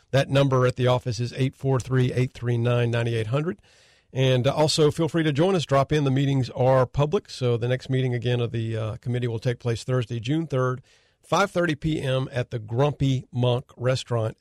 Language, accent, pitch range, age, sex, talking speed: English, American, 110-130 Hz, 50-69, male, 175 wpm